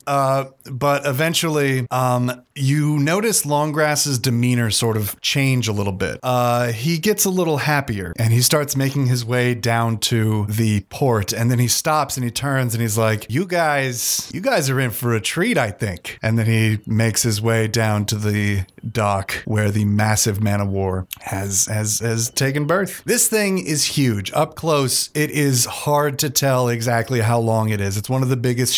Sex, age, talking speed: male, 30-49, 195 wpm